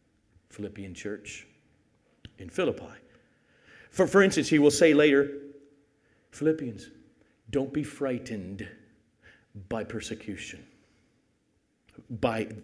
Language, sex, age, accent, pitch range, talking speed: English, male, 50-69, American, 110-155 Hz, 85 wpm